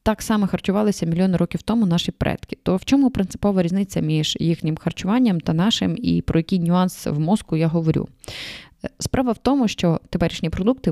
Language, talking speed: Ukrainian, 175 wpm